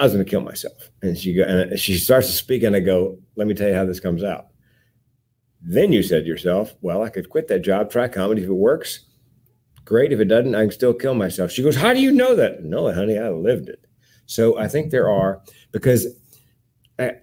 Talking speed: 230 wpm